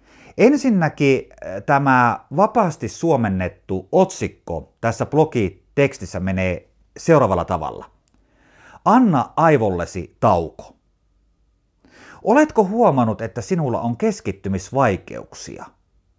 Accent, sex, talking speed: native, male, 70 wpm